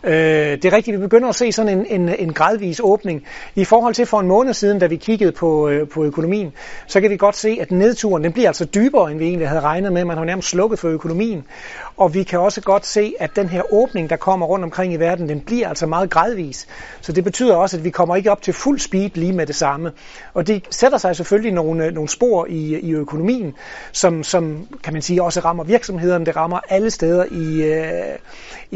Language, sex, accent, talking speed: Danish, male, native, 235 wpm